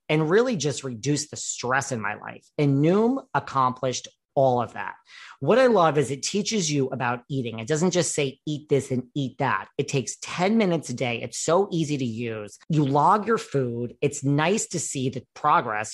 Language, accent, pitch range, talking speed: English, American, 130-165 Hz, 205 wpm